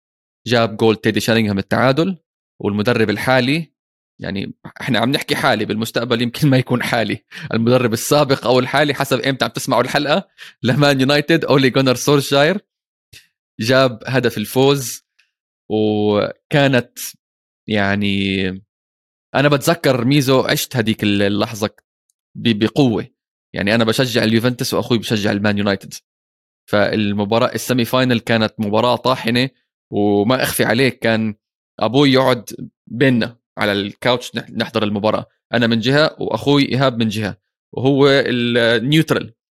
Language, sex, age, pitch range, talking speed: Arabic, male, 20-39, 110-135 Hz, 115 wpm